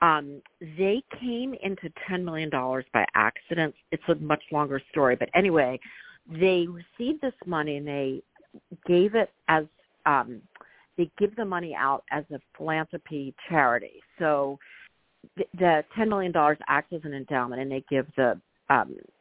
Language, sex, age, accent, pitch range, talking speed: English, female, 50-69, American, 140-185 Hz, 145 wpm